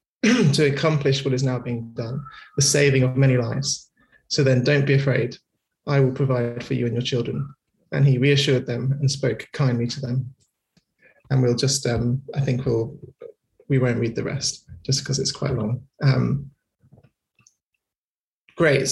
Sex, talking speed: male, 170 wpm